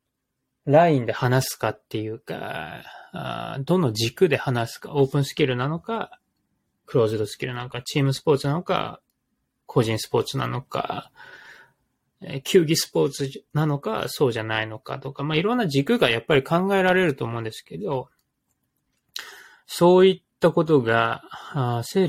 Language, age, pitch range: Japanese, 20-39, 120-170 Hz